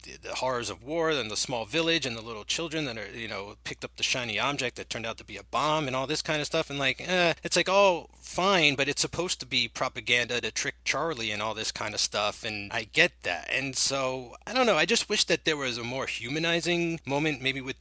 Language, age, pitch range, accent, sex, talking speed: English, 30-49, 115-155 Hz, American, male, 265 wpm